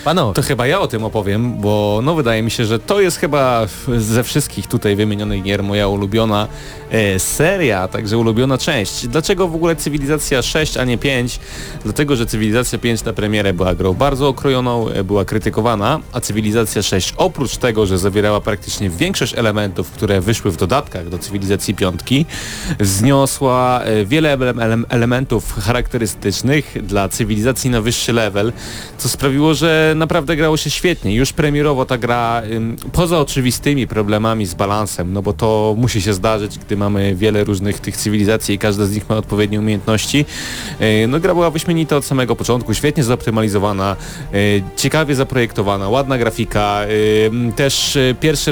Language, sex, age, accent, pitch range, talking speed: Polish, male, 30-49, native, 105-130 Hz, 155 wpm